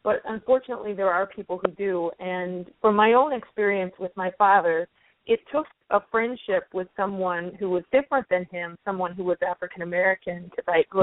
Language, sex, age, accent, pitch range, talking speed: English, female, 40-59, American, 180-220 Hz, 180 wpm